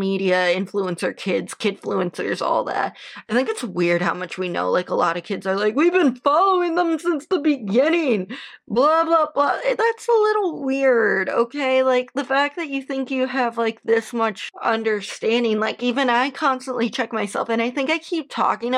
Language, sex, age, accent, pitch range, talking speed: English, female, 20-39, American, 195-255 Hz, 195 wpm